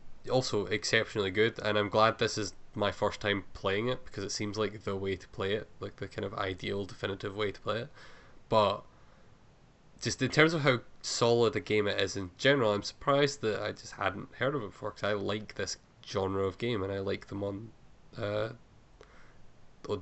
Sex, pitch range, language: male, 100-115 Hz, English